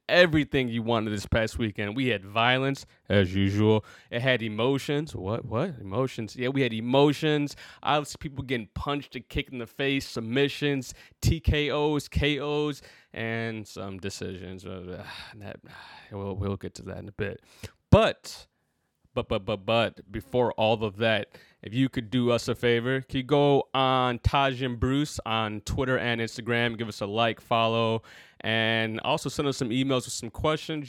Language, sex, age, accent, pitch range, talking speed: English, male, 20-39, American, 110-135 Hz, 165 wpm